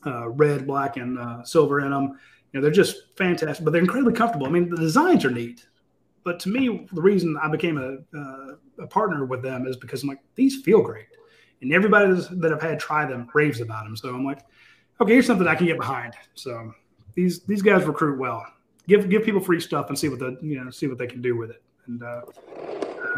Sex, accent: male, American